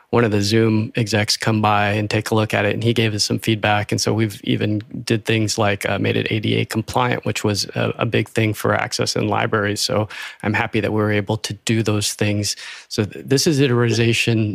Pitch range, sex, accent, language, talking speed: 110-125 Hz, male, American, English, 235 wpm